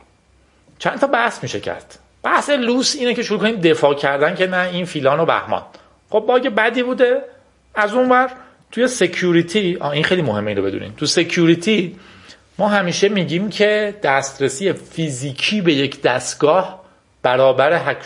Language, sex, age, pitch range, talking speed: Persian, male, 40-59, 135-195 Hz, 155 wpm